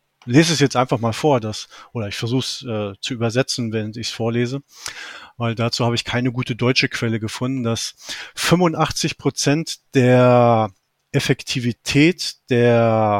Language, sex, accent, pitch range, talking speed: German, male, German, 120-145 Hz, 150 wpm